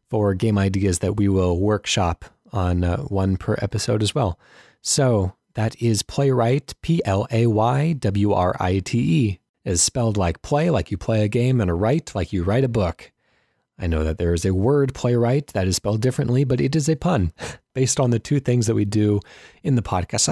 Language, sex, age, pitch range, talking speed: English, male, 30-49, 100-130 Hz, 190 wpm